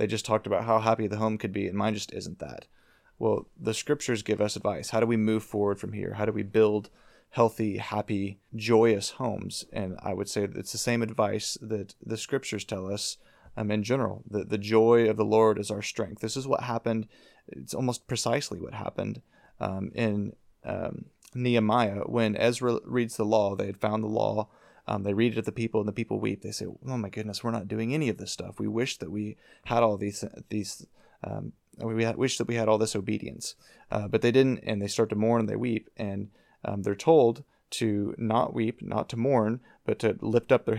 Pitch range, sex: 105-115 Hz, male